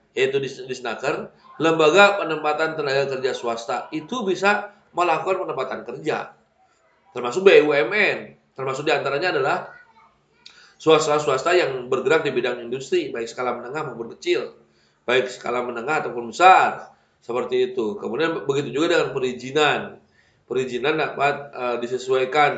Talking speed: 120 wpm